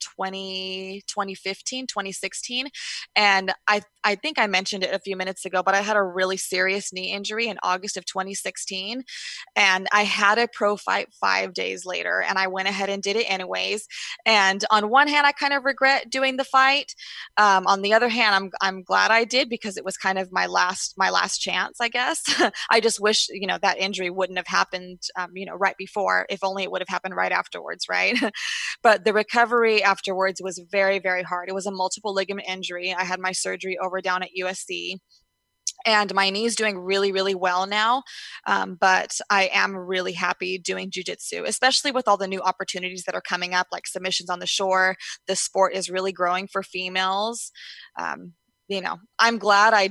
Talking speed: 200 wpm